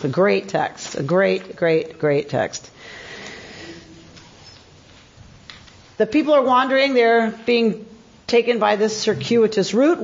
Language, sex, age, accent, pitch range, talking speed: English, female, 40-59, American, 220-280 Hz, 120 wpm